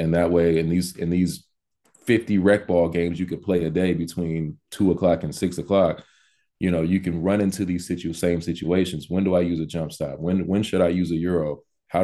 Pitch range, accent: 85-100 Hz, American